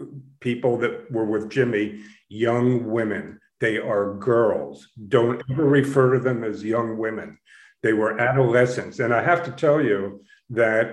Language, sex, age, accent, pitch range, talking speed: English, male, 50-69, American, 120-150 Hz, 155 wpm